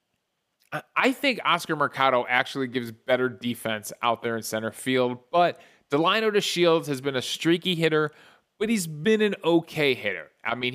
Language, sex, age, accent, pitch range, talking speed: English, male, 20-39, American, 120-155 Hz, 160 wpm